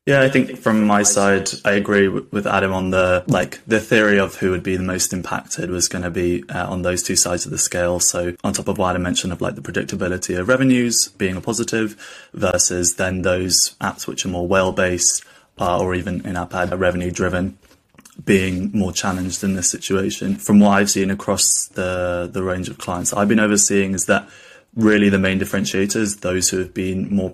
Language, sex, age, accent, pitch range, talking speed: English, male, 20-39, British, 90-100 Hz, 205 wpm